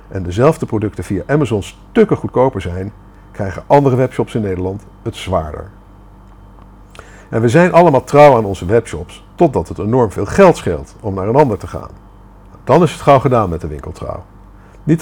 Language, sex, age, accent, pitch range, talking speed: Dutch, male, 50-69, Dutch, 95-130 Hz, 175 wpm